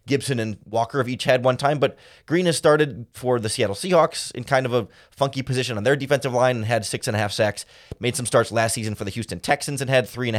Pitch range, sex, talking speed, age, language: 110-140 Hz, male, 270 wpm, 20-39, English